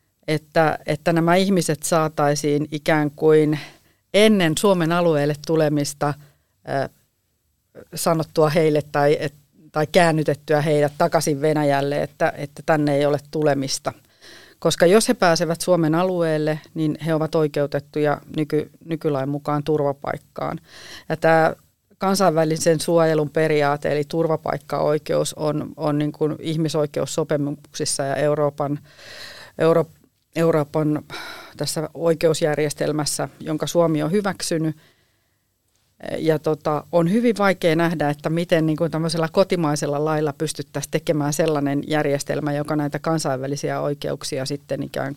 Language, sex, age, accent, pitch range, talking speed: Finnish, female, 50-69, native, 145-165 Hz, 115 wpm